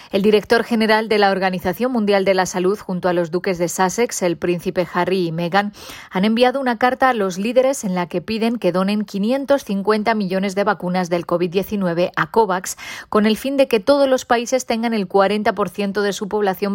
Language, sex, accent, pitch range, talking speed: Spanish, female, Spanish, 180-225 Hz, 200 wpm